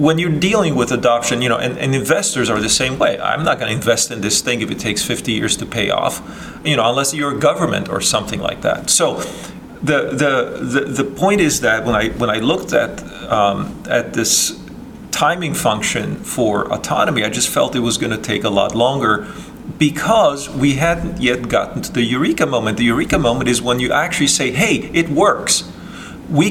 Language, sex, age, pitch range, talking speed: English, male, 40-59, 120-145 Hz, 210 wpm